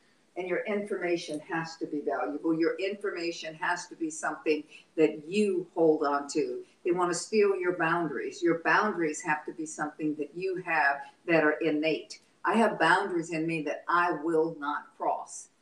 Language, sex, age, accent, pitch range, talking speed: English, female, 50-69, American, 160-220 Hz, 175 wpm